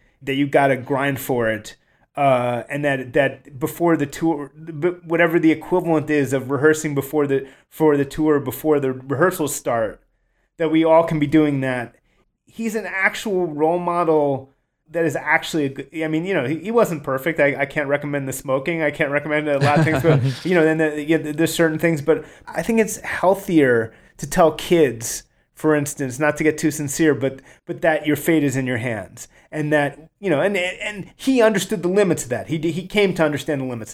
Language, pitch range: English, 135-160 Hz